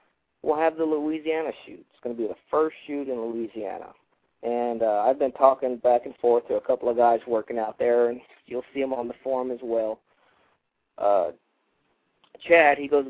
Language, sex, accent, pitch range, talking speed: English, male, American, 120-150 Hz, 195 wpm